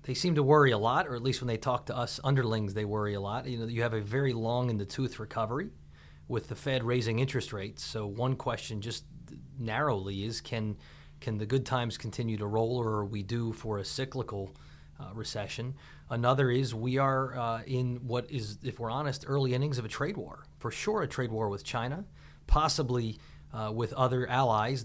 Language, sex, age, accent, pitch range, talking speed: English, male, 30-49, American, 110-130 Hz, 210 wpm